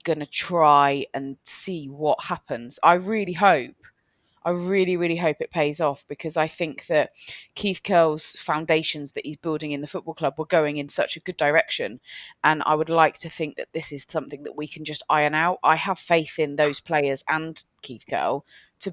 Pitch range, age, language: 145-170 Hz, 20-39, English